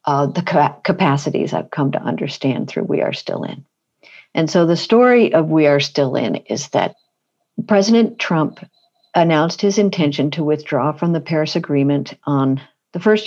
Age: 50-69